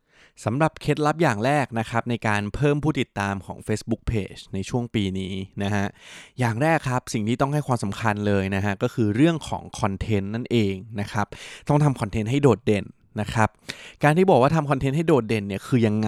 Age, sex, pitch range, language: 20-39, male, 105-130 Hz, Thai